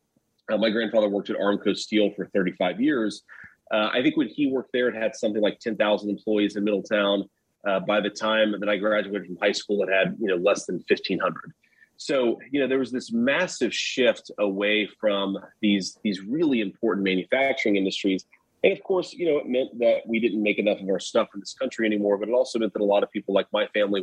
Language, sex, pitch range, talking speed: English, male, 100-110 Hz, 220 wpm